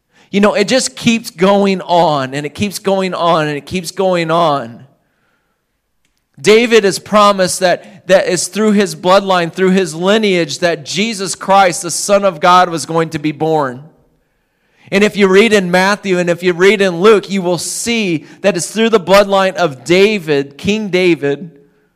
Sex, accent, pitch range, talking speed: male, American, 170-205 Hz, 180 wpm